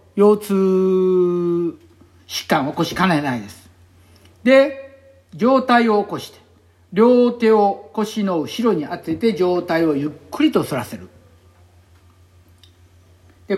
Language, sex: Japanese, male